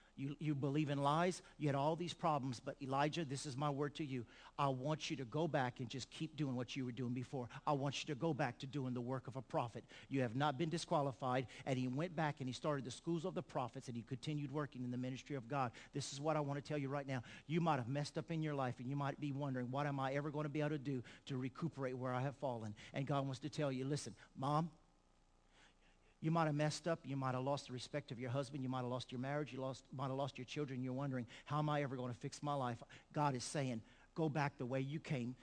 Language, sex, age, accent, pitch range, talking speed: English, male, 50-69, American, 130-165 Hz, 280 wpm